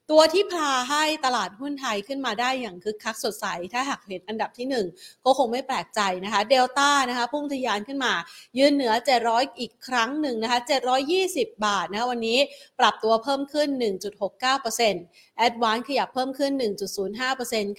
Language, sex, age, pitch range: Thai, female, 30-49, 215-275 Hz